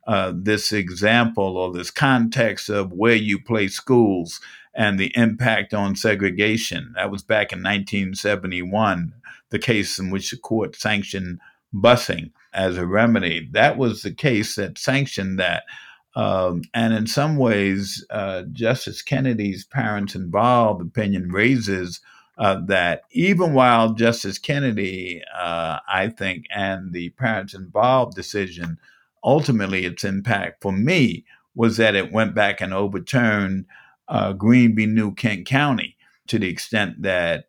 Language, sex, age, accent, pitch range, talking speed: English, male, 50-69, American, 95-110 Hz, 140 wpm